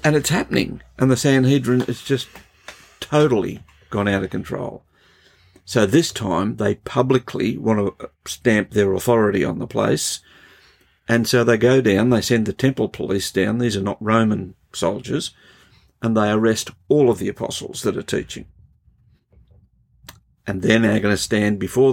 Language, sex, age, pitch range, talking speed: English, male, 50-69, 100-120 Hz, 160 wpm